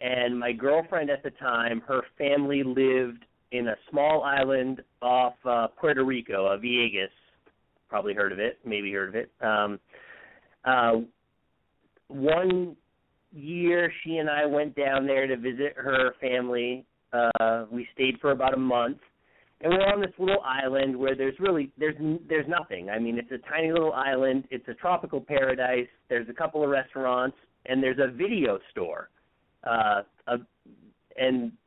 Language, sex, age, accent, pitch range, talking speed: English, male, 40-59, American, 125-145 Hz, 165 wpm